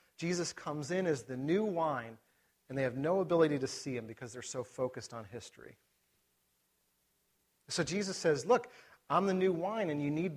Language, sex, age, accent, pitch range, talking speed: English, male, 40-59, American, 135-180 Hz, 185 wpm